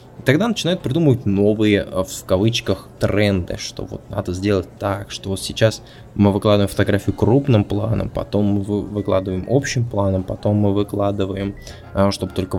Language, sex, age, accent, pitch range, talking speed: Russian, male, 20-39, native, 95-115 Hz, 145 wpm